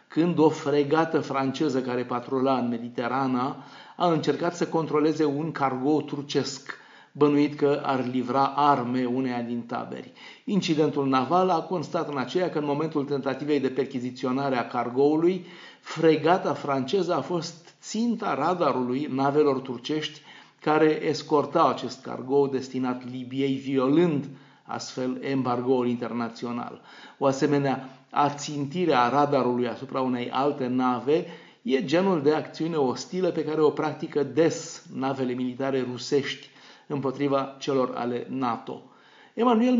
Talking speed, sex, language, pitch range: 125 wpm, male, Romanian, 130-160 Hz